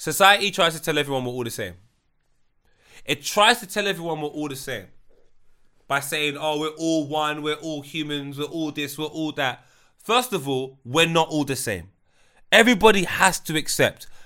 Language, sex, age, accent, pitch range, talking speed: English, male, 20-39, British, 150-205 Hz, 190 wpm